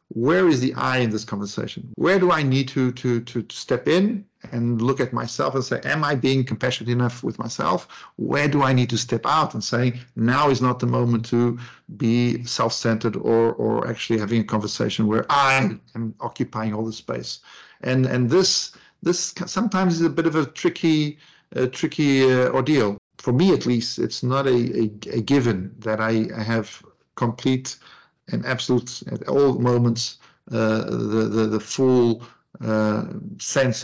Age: 50-69